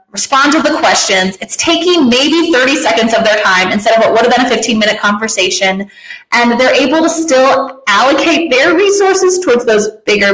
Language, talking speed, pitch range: English, 185 wpm, 200-275 Hz